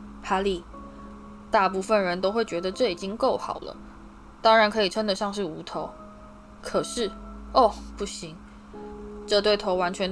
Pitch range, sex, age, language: 170-215 Hz, female, 10-29, Chinese